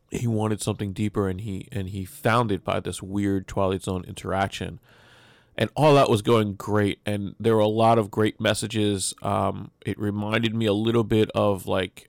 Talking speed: 195 wpm